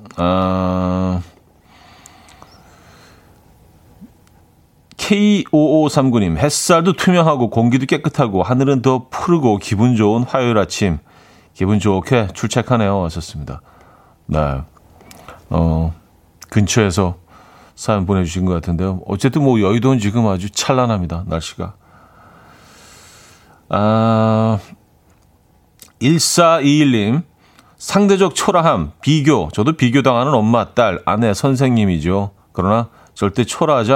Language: Korean